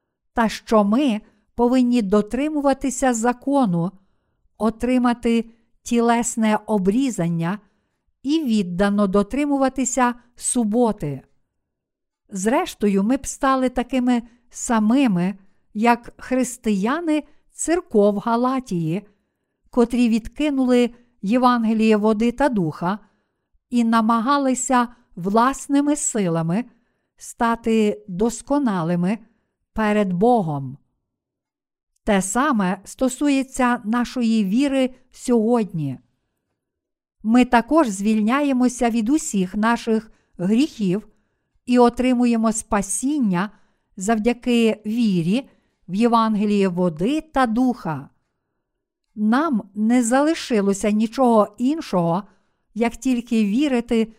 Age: 50-69